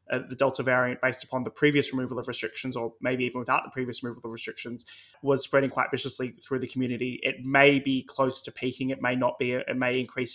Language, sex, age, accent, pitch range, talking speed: English, male, 20-39, Australian, 125-140 Hz, 230 wpm